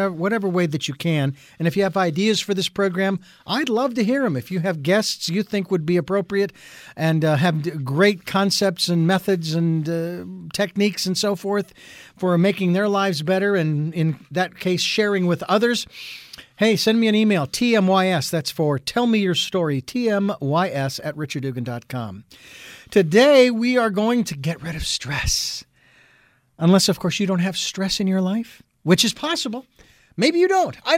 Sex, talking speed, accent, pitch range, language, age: male, 180 wpm, American, 170-215 Hz, English, 50-69